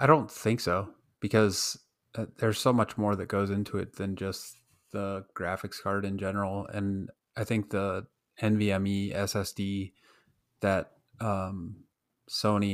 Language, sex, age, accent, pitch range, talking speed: English, male, 30-49, American, 95-105 Hz, 135 wpm